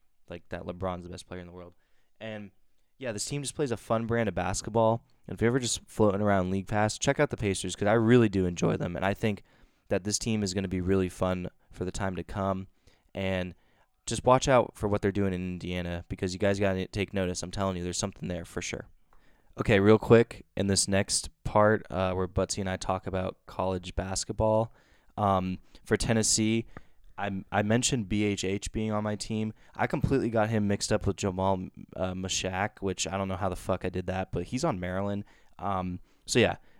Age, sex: 20-39, male